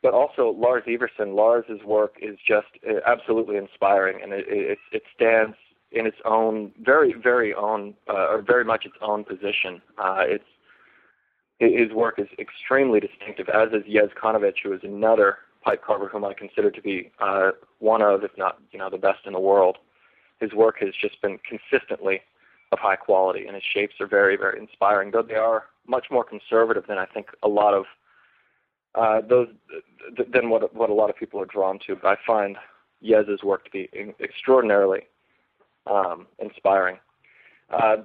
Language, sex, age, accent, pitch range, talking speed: English, male, 30-49, American, 100-120 Hz, 185 wpm